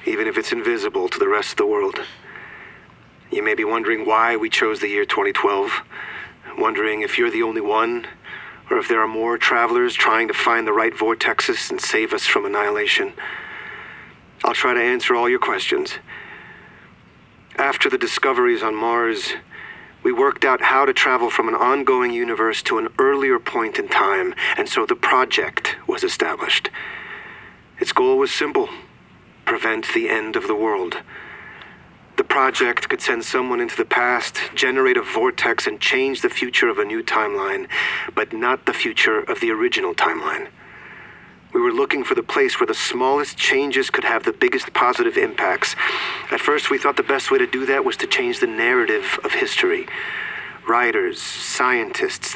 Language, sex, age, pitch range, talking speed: English, male, 40-59, 370-420 Hz, 170 wpm